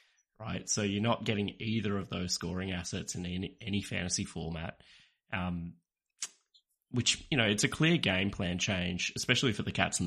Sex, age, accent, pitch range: male, 20-39, Australian, 90-105 Hz